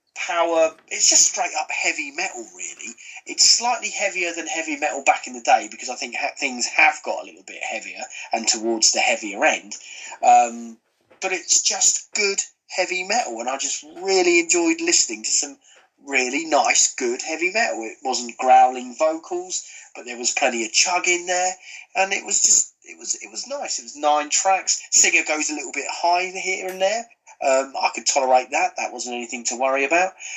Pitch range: 130-210 Hz